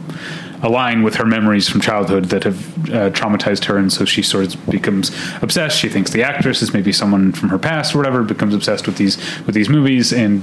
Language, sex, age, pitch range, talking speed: English, male, 30-49, 110-145 Hz, 220 wpm